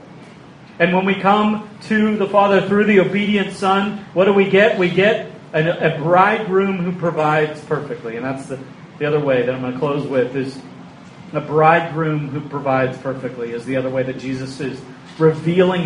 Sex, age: male, 40-59